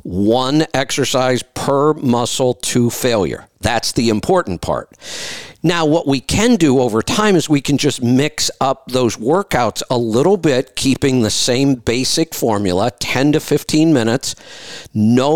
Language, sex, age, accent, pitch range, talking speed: English, male, 50-69, American, 110-145 Hz, 150 wpm